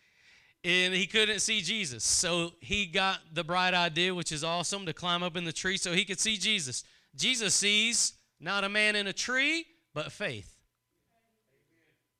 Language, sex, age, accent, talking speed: English, male, 30-49, American, 170 wpm